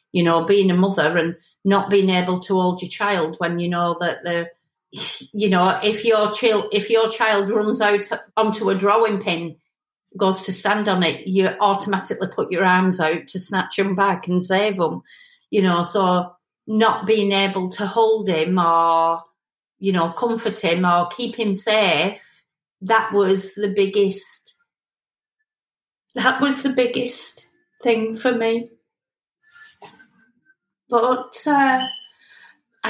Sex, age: female, 40-59